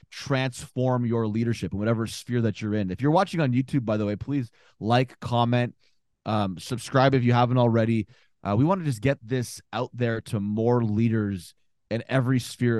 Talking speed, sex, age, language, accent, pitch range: 190 wpm, male, 20-39, English, American, 110-130 Hz